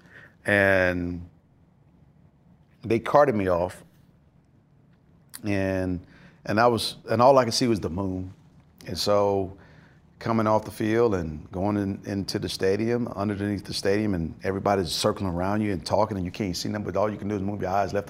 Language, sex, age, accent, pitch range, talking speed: English, male, 50-69, American, 90-110 Hz, 180 wpm